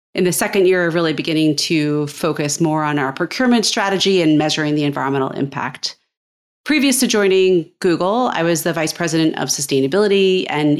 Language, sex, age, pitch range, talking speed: English, female, 30-49, 150-185 Hz, 165 wpm